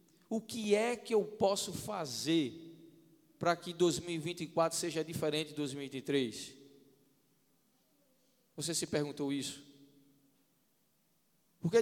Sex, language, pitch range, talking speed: male, Portuguese, 160-220 Hz, 95 wpm